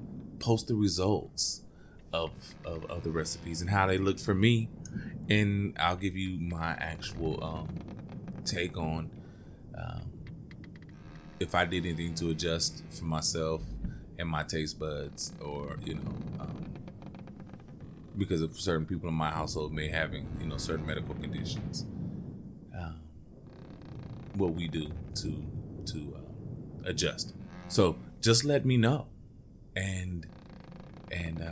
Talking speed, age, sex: 130 wpm, 20-39, male